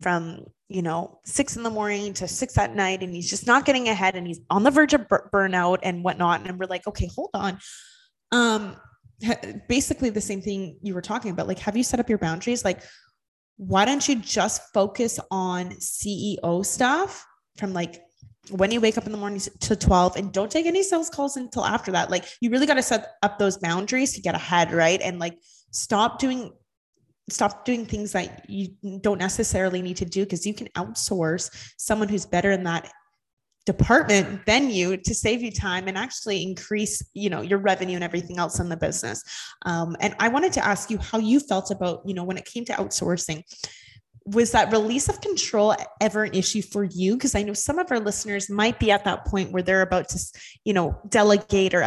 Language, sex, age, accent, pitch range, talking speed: English, female, 20-39, American, 180-230 Hz, 210 wpm